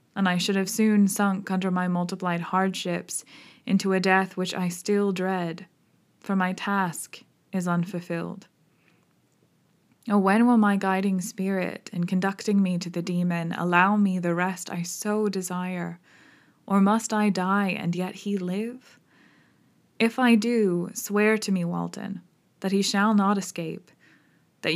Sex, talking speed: female, 150 wpm